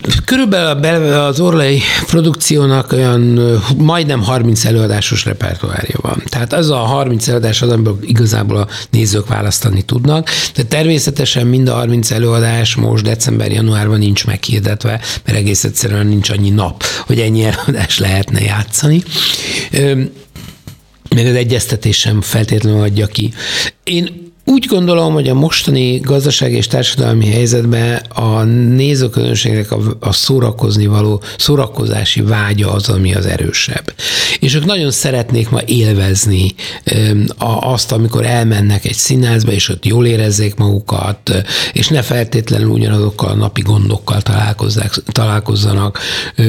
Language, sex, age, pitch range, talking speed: Hungarian, male, 60-79, 105-130 Hz, 120 wpm